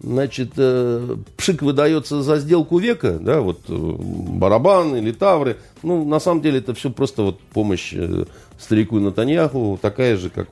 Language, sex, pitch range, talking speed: Russian, male, 90-130 Hz, 145 wpm